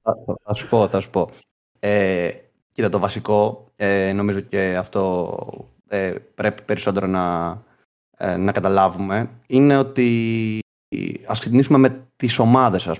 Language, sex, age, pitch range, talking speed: Greek, male, 20-39, 100-130 Hz, 135 wpm